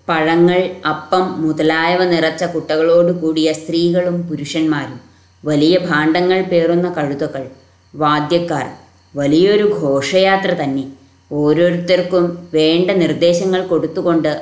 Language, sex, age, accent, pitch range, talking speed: Malayalam, female, 20-39, native, 155-205 Hz, 80 wpm